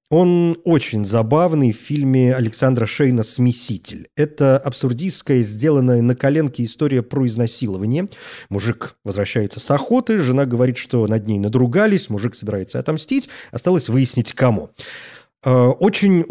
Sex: male